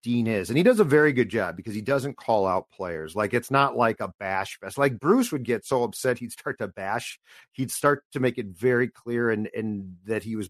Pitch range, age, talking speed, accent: 105-130 Hz, 50-69, 250 wpm, American